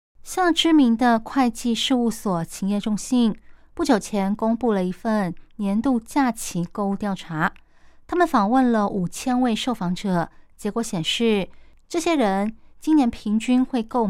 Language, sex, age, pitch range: Chinese, female, 20-39, 185-245 Hz